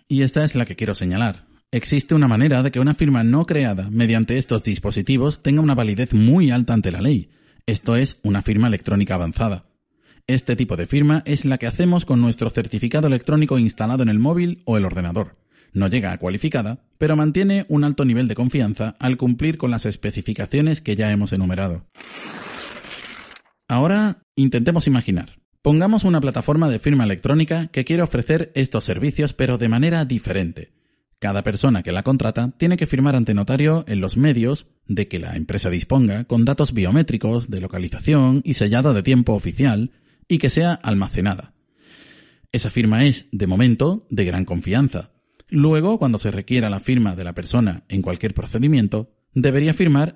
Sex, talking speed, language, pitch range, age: male, 170 wpm, Spanish, 105-145 Hz, 30-49